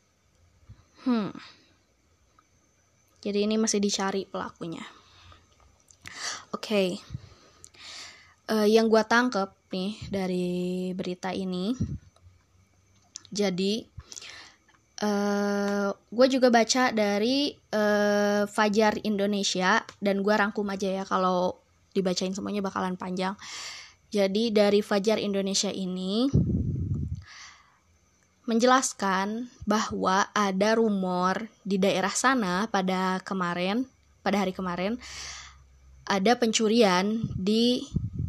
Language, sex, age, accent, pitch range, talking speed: Indonesian, female, 20-39, native, 185-220 Hz, 85 wpm